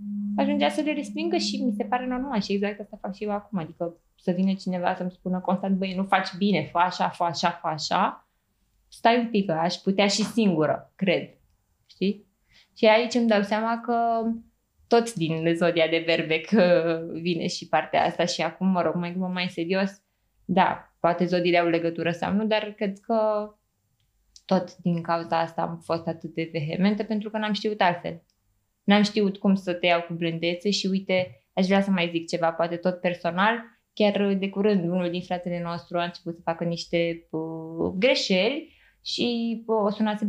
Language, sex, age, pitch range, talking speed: Romanian, female, 20-39, 170-215 Hz, 190 wpm